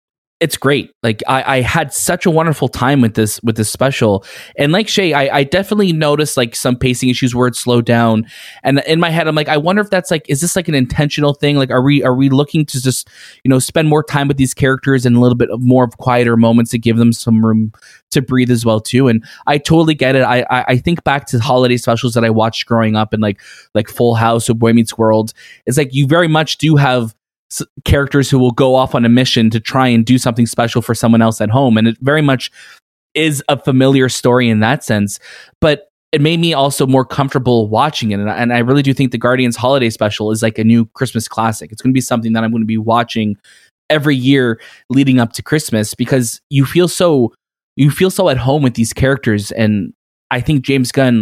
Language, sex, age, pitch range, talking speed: English, male, 20-39, 115-140 Hz, 240 wpm